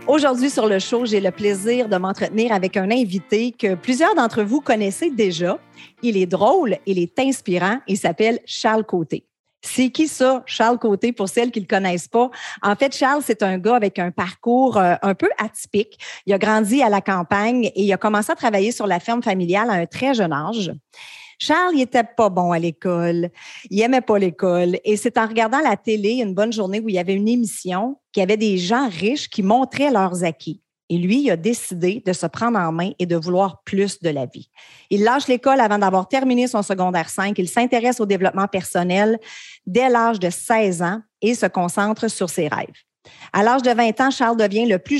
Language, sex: French, female